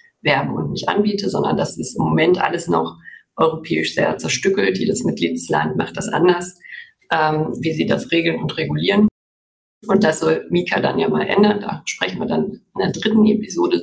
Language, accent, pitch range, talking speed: German, German, 165-215 Hz, 180 wpm